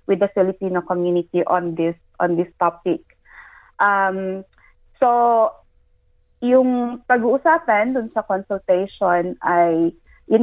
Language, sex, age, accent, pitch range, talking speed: Filipino, female, 20-39, native, 180-220 Hz, 105 wpm